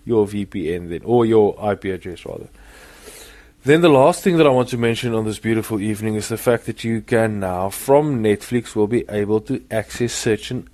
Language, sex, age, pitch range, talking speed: English, male, 20-39, 105-125 Hz, 200 wpm